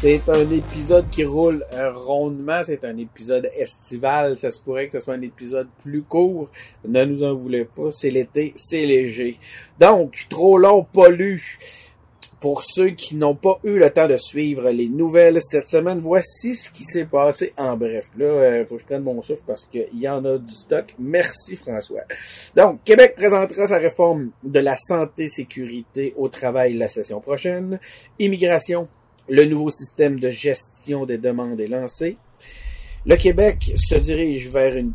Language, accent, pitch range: French, Canadian, 115-155 Hz